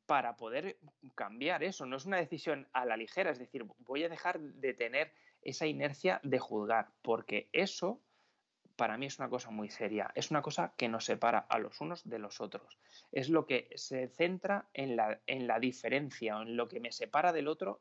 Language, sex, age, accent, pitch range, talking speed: Spanish, male, 30-49, Spanish, 125-165 Hz, 200 wpm